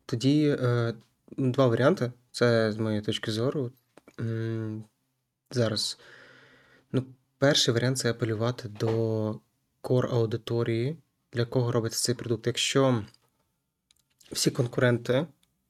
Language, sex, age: Ukrainian, male, 20-39